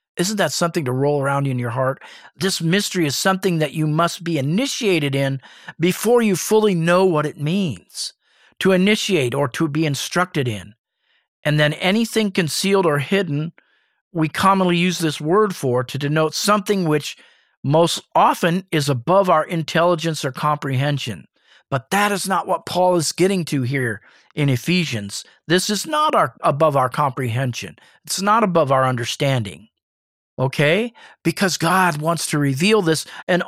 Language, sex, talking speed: English, male, 160 wpm